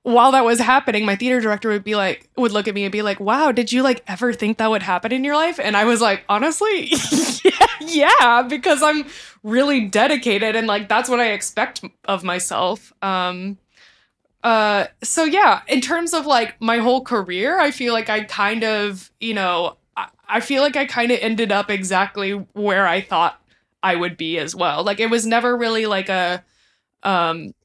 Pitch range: 180-235 Hz